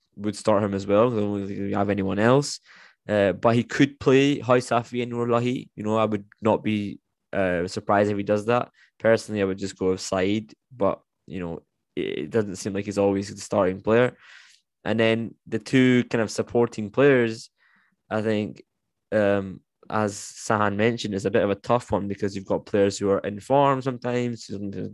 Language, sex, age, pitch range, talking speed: English, male, 10-29, 100-115 Hz, 195 wpm